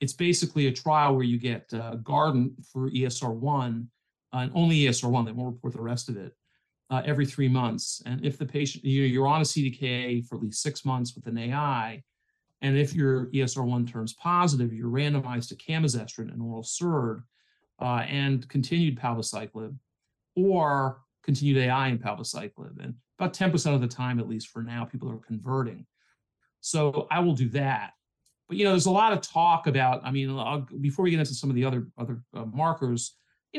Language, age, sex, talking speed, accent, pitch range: English, 40-59, male, 185 wpm, American, 120-150 Hz